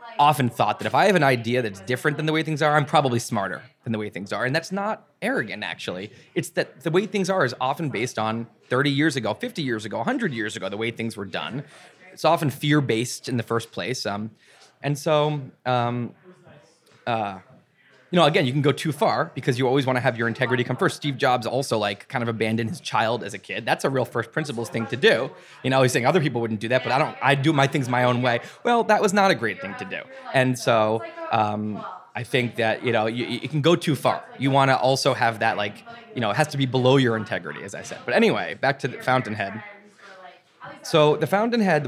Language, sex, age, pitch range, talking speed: English, male, 20-39, 115-155 Hz, 245 wpm